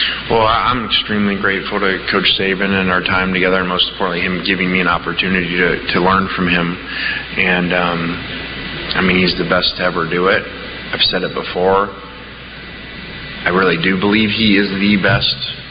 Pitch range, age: 90-100 Hz, 20-39